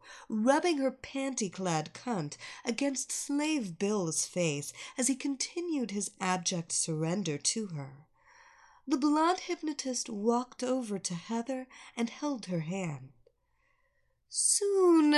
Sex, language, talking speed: female, English, 110 wpm